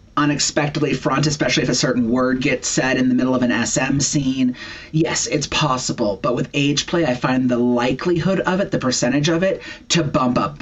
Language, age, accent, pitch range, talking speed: English, 30-49, American, 125-160 Hz, 205 wpm